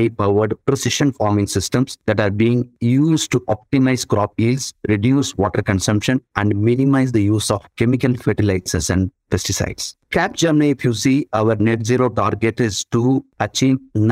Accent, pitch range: Indian, 95-120 Hz